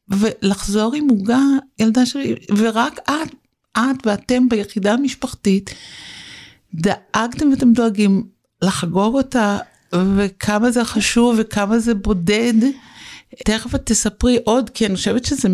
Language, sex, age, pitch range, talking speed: Hebrew, female, 60-79, 185-230 Hz, 110 wpm